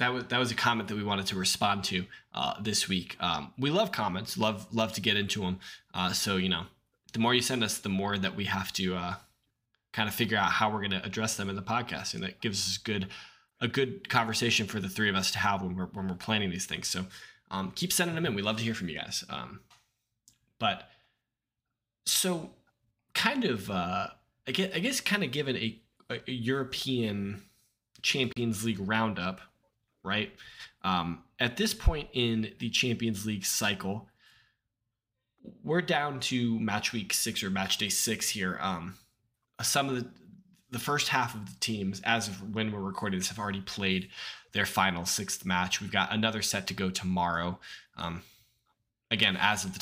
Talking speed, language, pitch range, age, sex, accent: 190 wpm, English, 95-120 Hz, 20-39, male, American